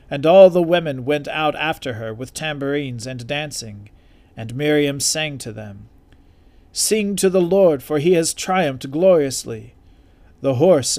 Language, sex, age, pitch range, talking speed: English, male, 40-59, 90-150 Hz, 155 wpm